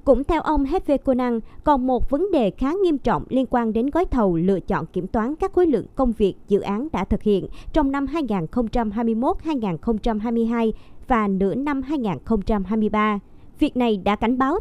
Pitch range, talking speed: 210-280 Hz, 175 wpm